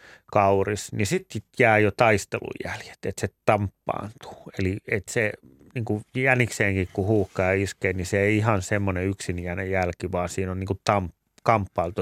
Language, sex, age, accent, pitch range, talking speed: Finnish, male, 30-49, native, 95-120 Hz, 160 wpm